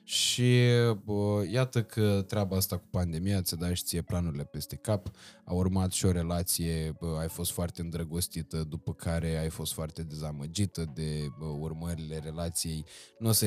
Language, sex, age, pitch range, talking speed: Romanian, male, 20-39, 85-100 Hz, 170 wpm